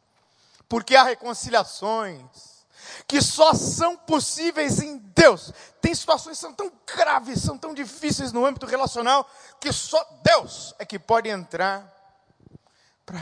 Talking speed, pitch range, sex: 130 wpm, 125-195 Hz, male